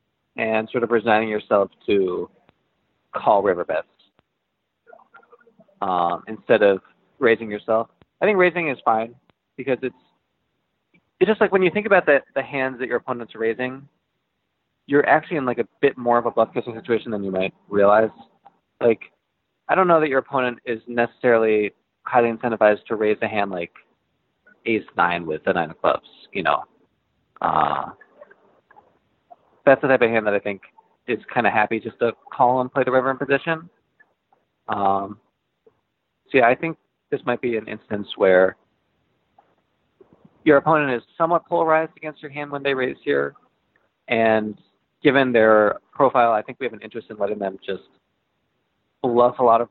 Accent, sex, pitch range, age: American, male, 110-145 Hz, 20-39